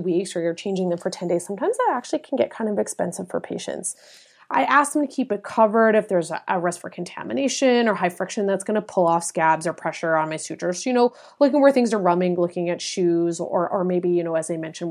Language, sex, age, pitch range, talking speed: English, female, 30-49, 175-235 Hz, 255 wpm